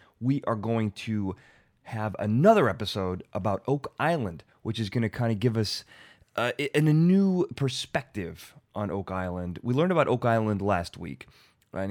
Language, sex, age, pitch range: English, male, 30-49, 100-135 Hz